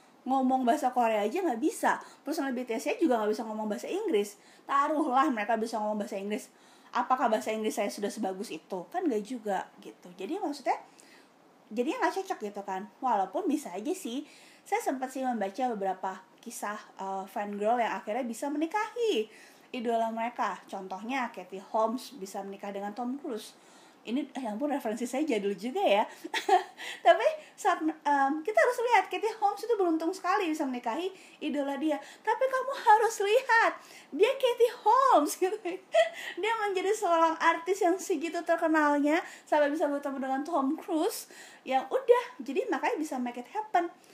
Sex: female